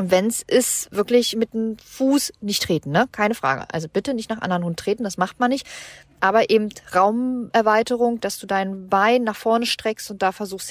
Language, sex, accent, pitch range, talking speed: German, female, German, 175-245 Hz, 200 wpm